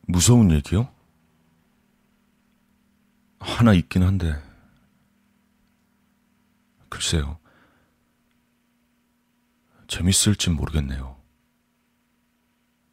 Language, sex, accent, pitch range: Korean, male, native, 70-100 Hz